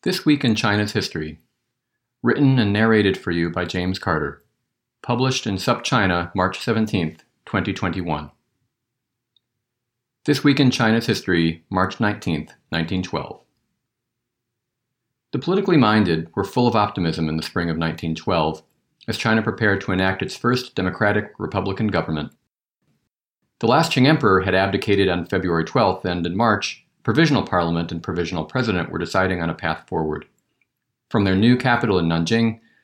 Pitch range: 90-120 Hz